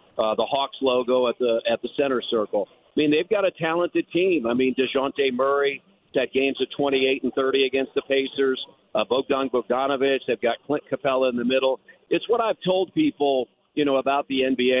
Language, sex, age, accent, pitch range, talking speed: English, male, 50-69, American, 125-145 Hz, 205 wpm